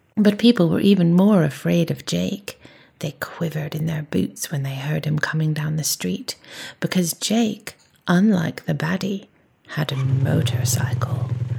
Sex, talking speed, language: female, 150 wpm, English